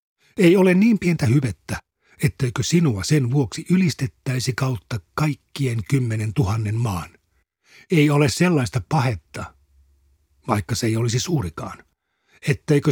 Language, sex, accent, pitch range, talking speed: Finnish, male, native, 110-150 Hz, 115 wpm